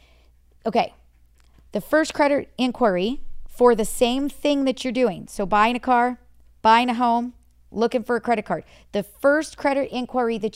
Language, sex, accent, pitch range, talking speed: English, female, American, 195-240 Hz, 165 wpm